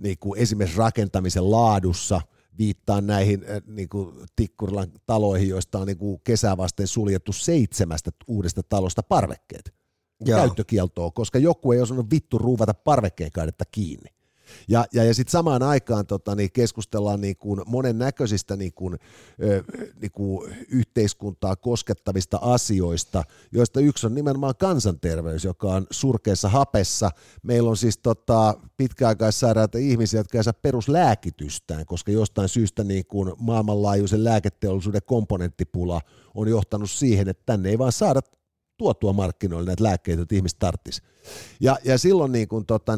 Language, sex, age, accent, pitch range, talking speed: Finnish, male, 50-69, native, 100-120 Hz, 130 wpm